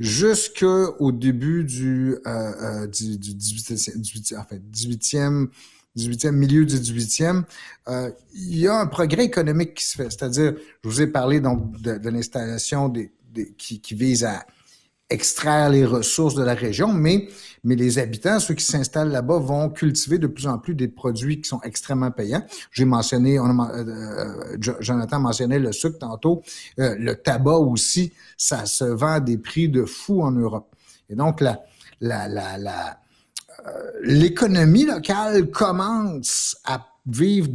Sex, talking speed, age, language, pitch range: male, 155 wpm, 50-69, French, 120-170 Hz